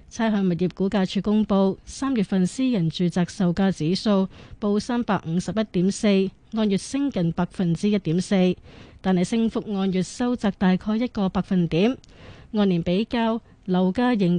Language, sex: Chinese, female